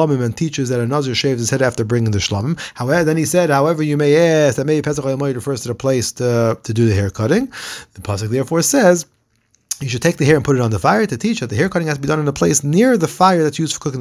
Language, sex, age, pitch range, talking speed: English, male, 30-49, 125-160 Hz, 285 wpm